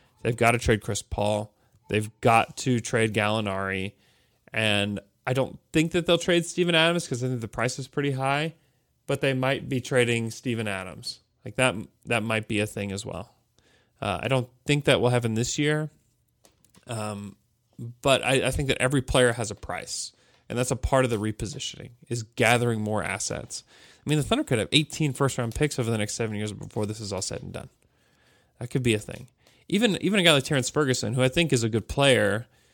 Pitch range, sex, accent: 110-140 Hz, male, American